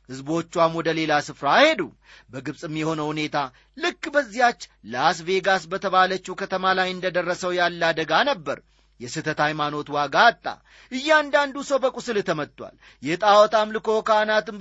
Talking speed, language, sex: 105 wpm, Amharic, male